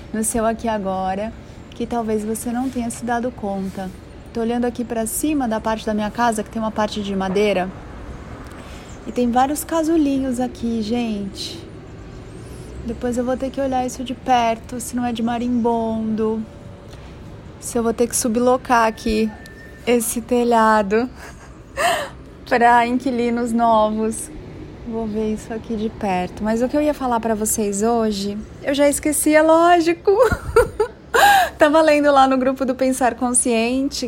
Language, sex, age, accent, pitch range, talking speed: Portuguese, female, 30-49, Brazilian, 225-260 Hz, 155 wpm